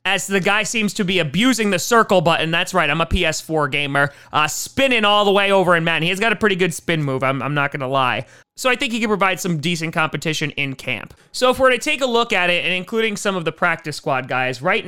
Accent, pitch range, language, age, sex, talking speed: American, 150-195 Hz, English, 30-49, male, 270 wpm